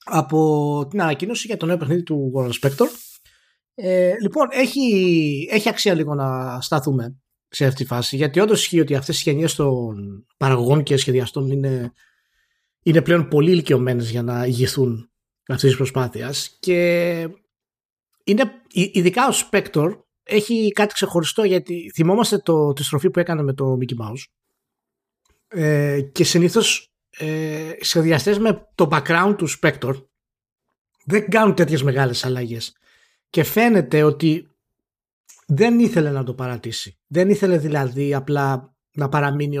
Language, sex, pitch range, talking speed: Greek, male, 135-185 Hz, 140 wpm